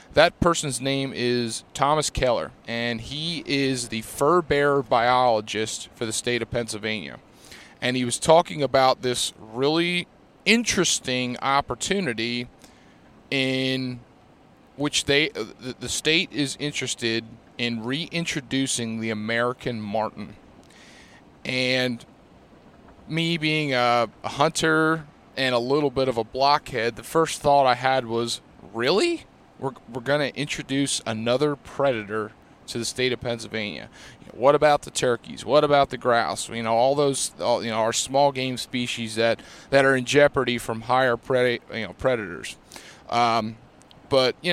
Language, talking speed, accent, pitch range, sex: English, 140 wpm, American, 120-145 Hz, male